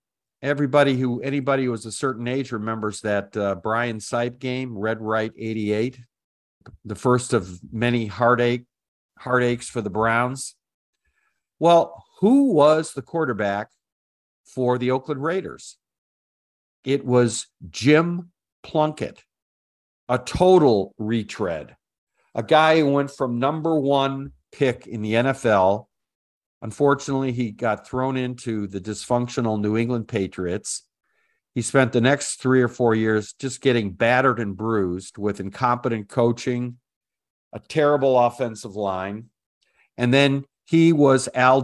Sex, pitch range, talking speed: male, 110-135 Hz, 125 wpm